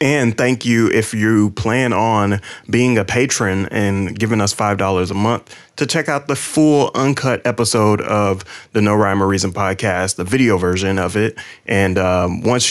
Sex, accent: male, American